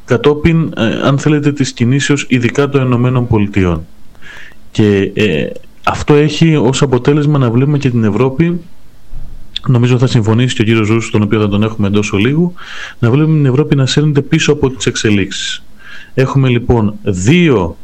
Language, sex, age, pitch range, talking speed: Greek, male, 30-49, 110-150 Hz, 160 wpm